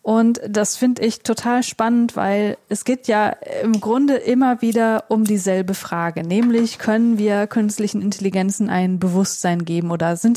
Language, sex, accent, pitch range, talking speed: German, female, German, 195-230 Hz, 155 wpm